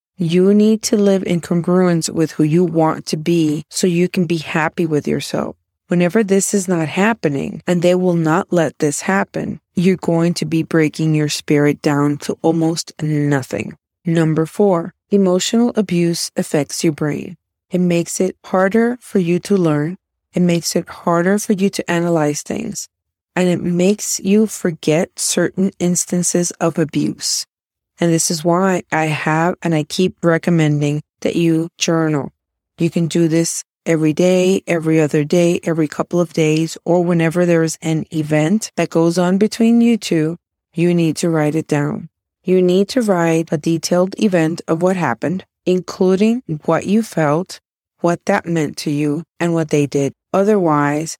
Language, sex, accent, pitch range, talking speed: English, female, American, 160-185 Hz, 170 wpm